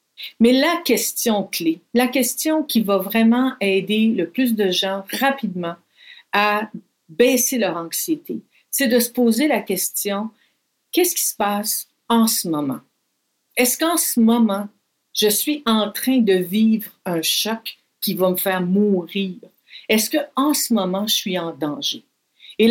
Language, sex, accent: French, female, Canadian